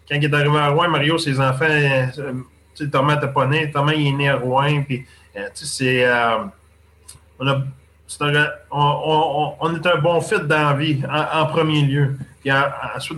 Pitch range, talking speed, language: 130-160 Hz, 200 wpm, French